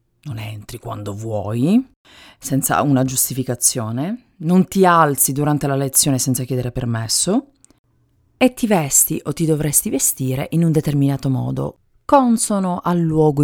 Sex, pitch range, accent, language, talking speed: female, 130-180 Hz, native, Italian, 140 wpm